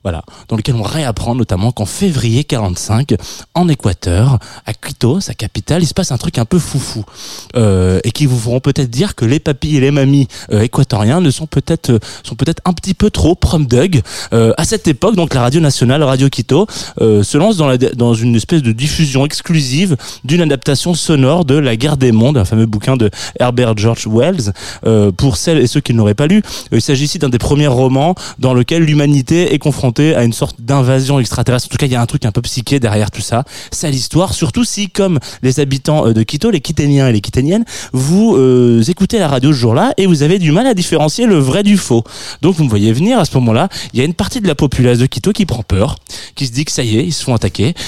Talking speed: 240 wpm